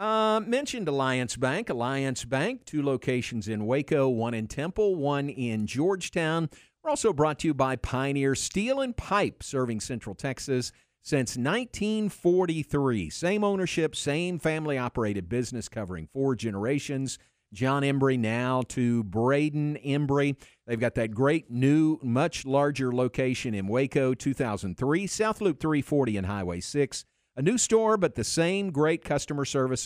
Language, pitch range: English, 115-155 Hz